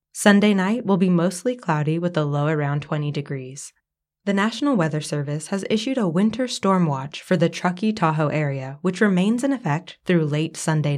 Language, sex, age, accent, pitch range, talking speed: English, female, 20-39, American, 150-200 Hz, 185 wpm